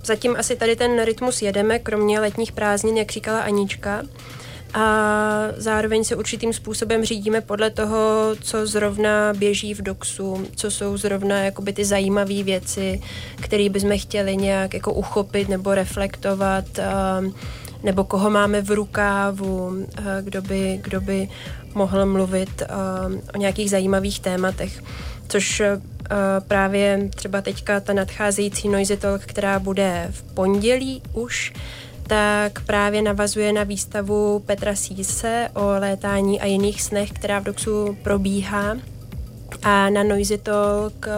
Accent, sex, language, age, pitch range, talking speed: native, female, Czech, 20-39, 195-210 Hz, 125 wpm